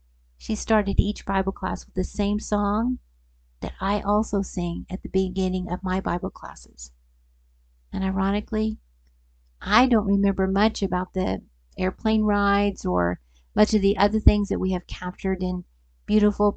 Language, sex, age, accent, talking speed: English, female, 50-69, American, 150 wpm